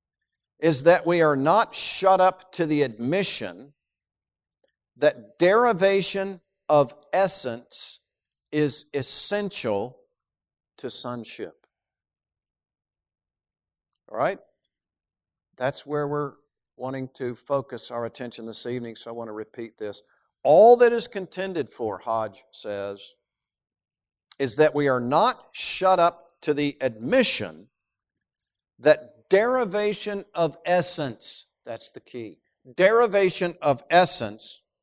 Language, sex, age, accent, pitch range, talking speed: English, male, 50-69, American, 120-185 Hz, 110 wpm